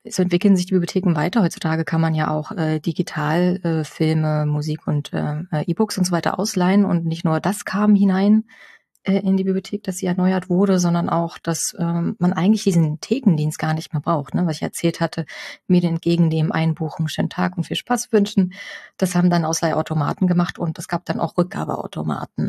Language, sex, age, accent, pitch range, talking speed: German, female, 30-49, German, 160-190 Hz, 195 wpm